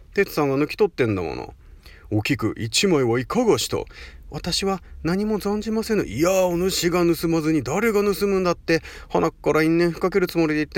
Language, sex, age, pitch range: Japanese, male, 40-59, 130-205 Hz